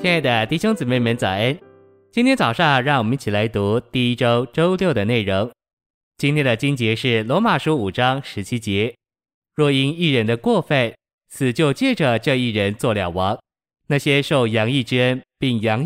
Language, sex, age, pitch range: Chinese, male, 20-39, 110-150 Hz